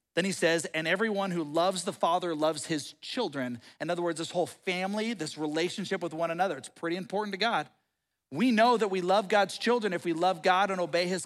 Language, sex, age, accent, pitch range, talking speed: English, male, 40-59, American, 185-260 Hz, 225 wpm